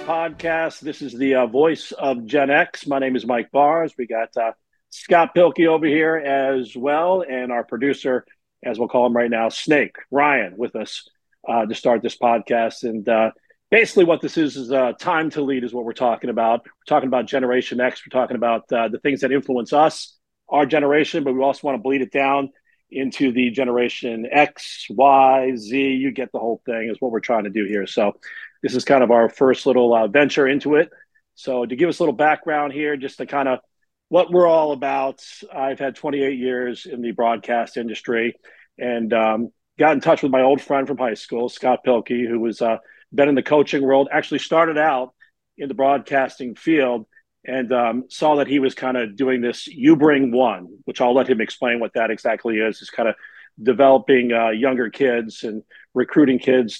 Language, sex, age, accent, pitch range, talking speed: English, male, 40-59, American, 120-145 Hz, 205 wpm